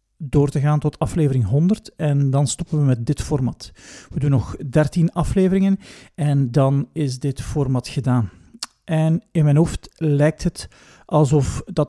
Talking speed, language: 160 wpm, Dutch